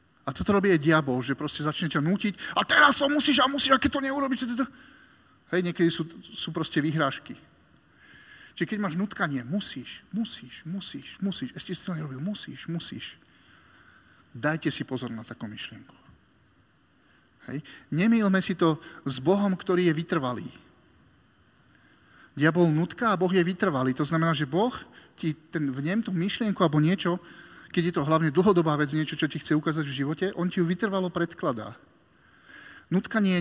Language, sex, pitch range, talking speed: Slovak, male, 150-190 Hz, 170 wpm